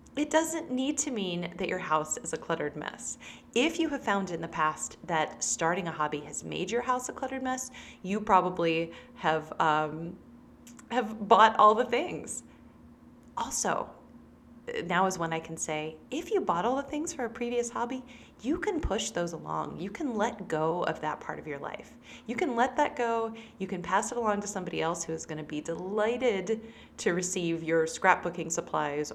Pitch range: 165-250 Hz